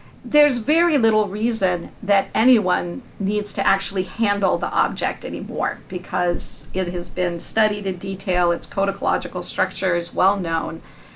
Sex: female